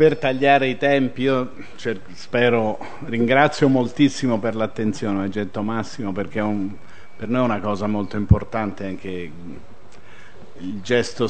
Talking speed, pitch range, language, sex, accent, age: 135 wpm, 100-130 Hz, Italian, male, native, 50-69